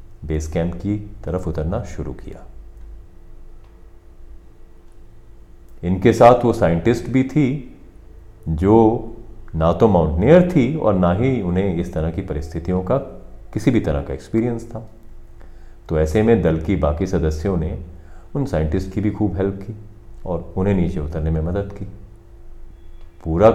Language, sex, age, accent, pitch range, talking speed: Hindi, male, 40-59, native, 85-100 Hz, 145 wpm